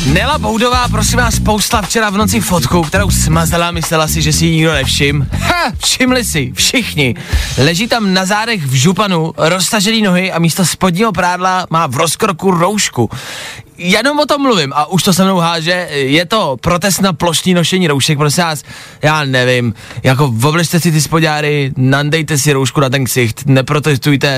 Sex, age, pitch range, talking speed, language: male, 20-39, 145-230 Hz, 175 wpm, Czech